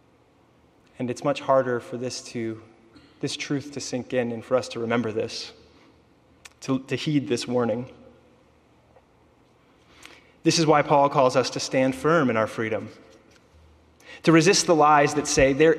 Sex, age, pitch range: male, 20-39, 125-165 Hz